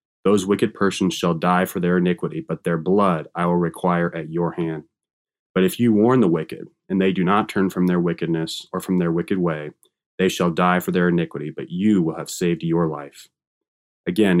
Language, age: English, 20-39